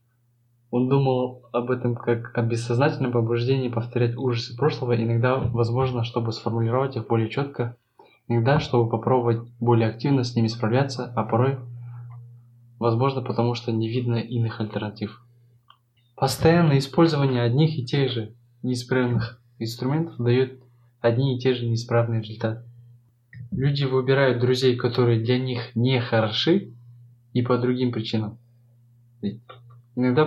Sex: male